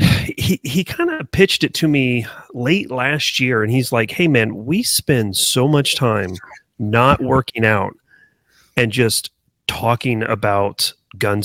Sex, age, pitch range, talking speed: male, 30-49, 115-145 Hz, 150 wpm